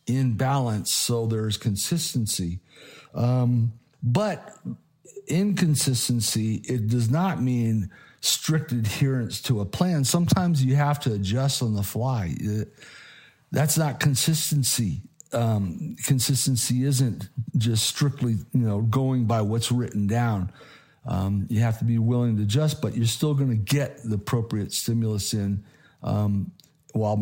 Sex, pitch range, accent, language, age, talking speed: male, 110-135 Hz, American, English, 50-69, 130 wpm